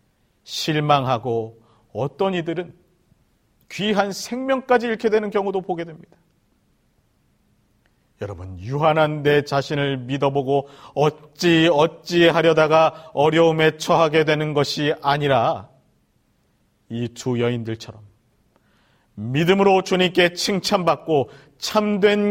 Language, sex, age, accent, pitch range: Korean, male, 40-59, native, 140-195 Hz